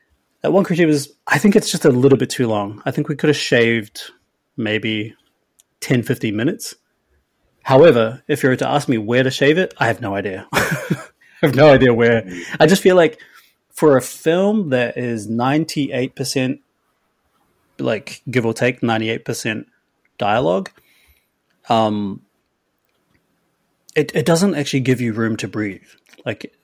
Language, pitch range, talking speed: English, 110-145 Hz, 160 wpm